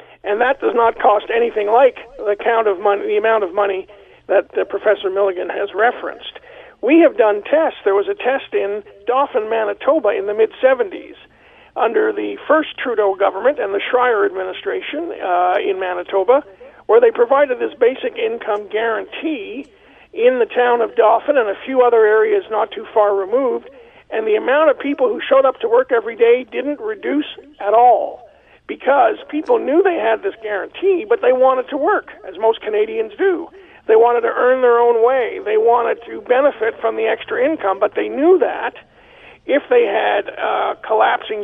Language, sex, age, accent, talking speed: English, male, 50-69, American, 175 wpm